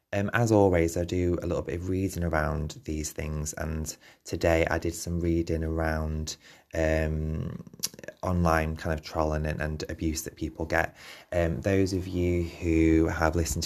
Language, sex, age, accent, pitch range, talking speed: English, male, 20-39, British, 80-90 Hz, 165 wpm